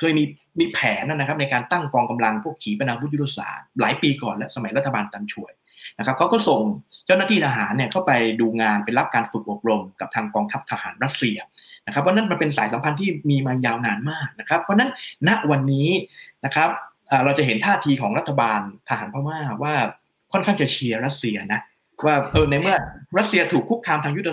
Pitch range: 125-170 Hz